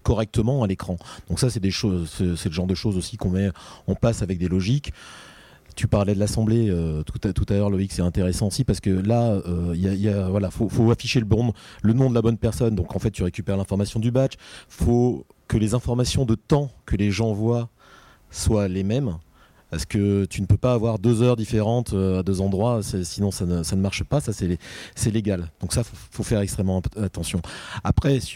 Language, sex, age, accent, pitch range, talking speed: French, male, 30-49, French, 95-115 Hz, 235 wpm